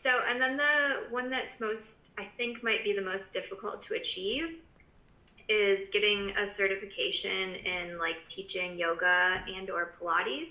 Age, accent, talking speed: 20-39, American, 155 wpm